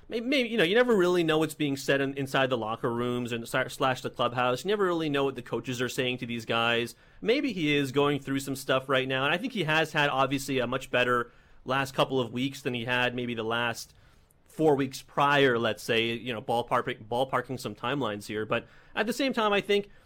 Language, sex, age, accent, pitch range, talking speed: English, male, 30-49, American, 120-150 Hz, 235 wpm